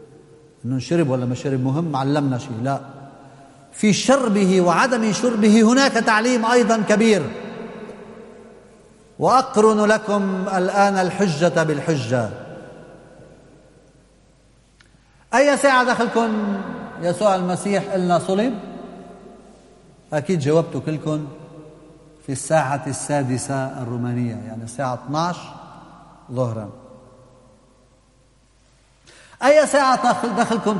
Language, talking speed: Arabic, 85 wpm